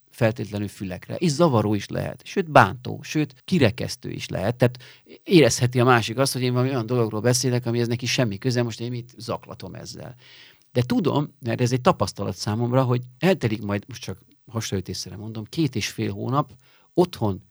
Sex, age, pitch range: male, 50-69, 110-140 Hz